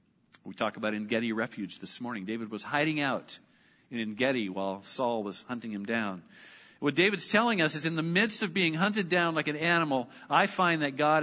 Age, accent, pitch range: 50-69, American, 135-195 Hz